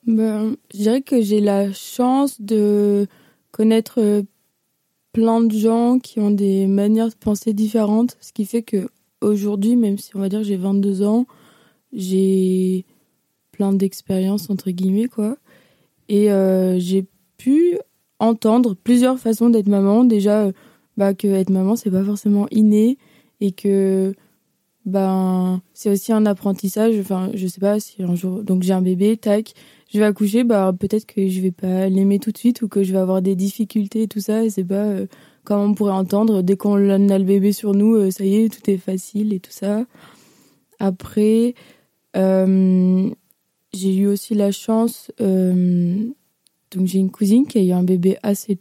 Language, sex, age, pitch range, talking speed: French, female, 20-39, 190-220 Hz, 180 wpm